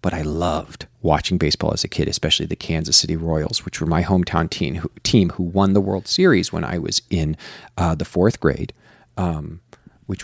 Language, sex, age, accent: English, male, 40-59, American